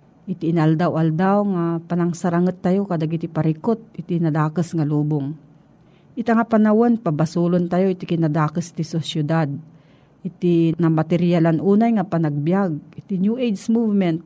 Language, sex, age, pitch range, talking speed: Filipino, female, 50-69, 160-205 Hz, 130 wpm